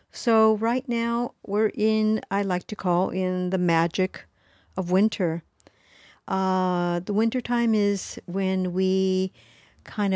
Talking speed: 125 wpm